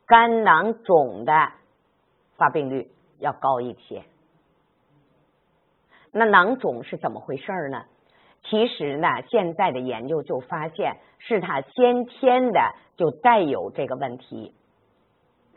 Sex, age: female, 50-69